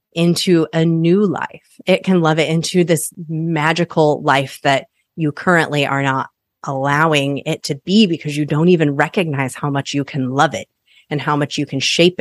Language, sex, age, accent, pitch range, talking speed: English, female, 30-49, American, 145-175 Hz, 185 wpm